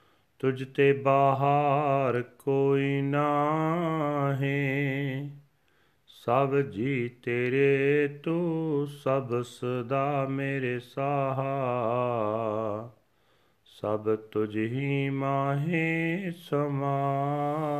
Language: Punjabi